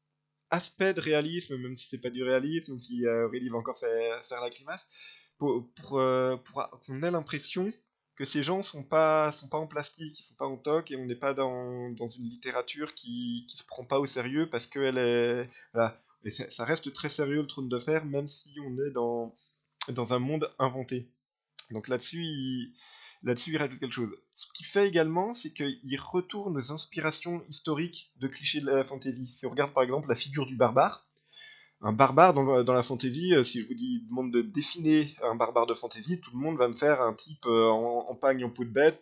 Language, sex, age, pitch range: French, male, 20-39, 120-155 Hz